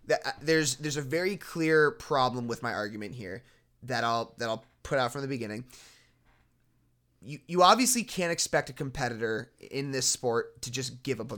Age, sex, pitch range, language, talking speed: 20-39, male, 120-150 Hz, English, 190 wpm